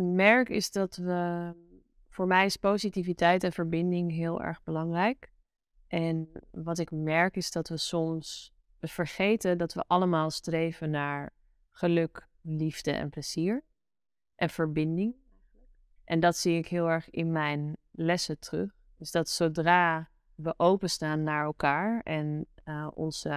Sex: female